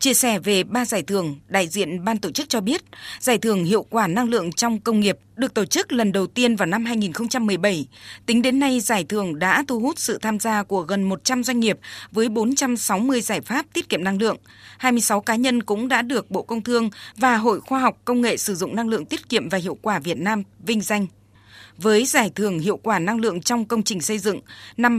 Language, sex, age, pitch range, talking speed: Vietnamese, female, 20-39, 200-245 Hz, 230 wpm